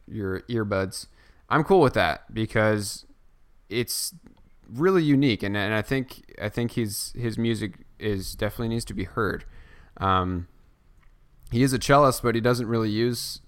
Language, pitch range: English, 95-115 Hz